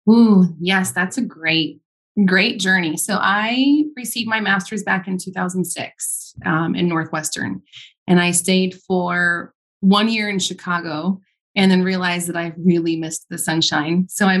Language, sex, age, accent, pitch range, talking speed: English, female, 20-39, American, 165-190 Hz, 155 wpm